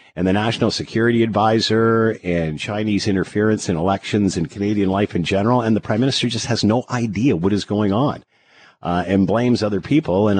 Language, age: English, 50-69